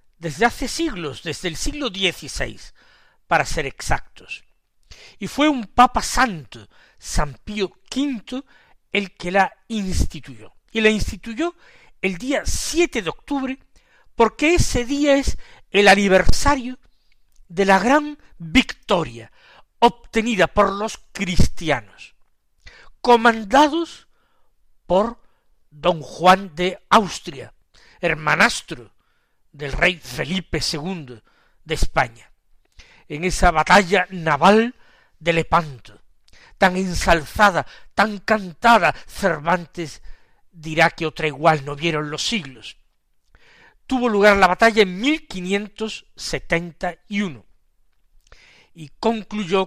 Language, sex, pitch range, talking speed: Spanish, male, 160-235 Hz, 100 wpm